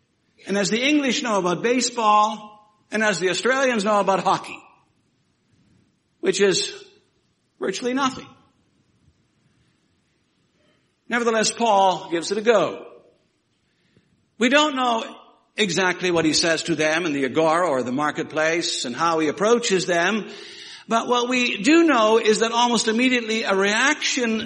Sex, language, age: male, English, 60-79